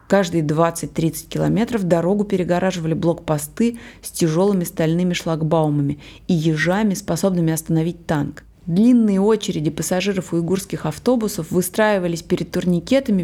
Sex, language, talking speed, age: female, Russian, 110 wpm, 30-49